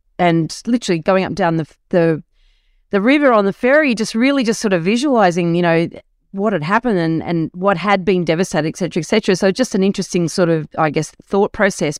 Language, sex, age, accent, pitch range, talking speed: English, female, 40-59, Australian, 160-215 Hz, 220 wpm